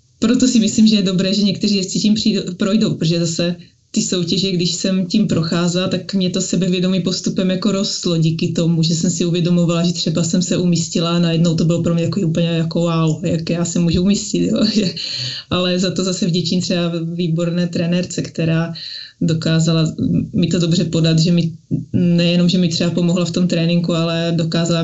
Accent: native